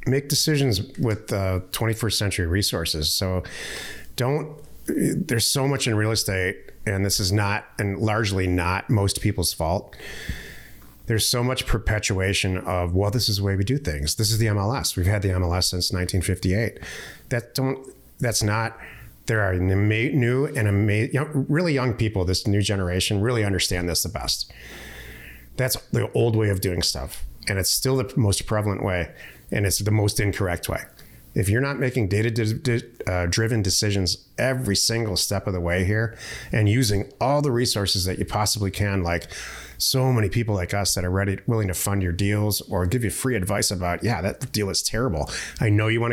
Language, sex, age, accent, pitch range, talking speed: English, male, 30-49, American, 95-115 Hz, 185 wpm